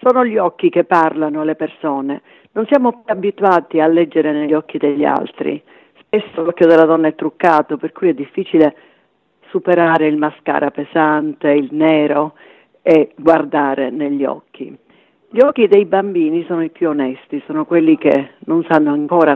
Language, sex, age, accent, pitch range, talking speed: Italian, female, 50-69, native, 145-190 Hz, 160 wpm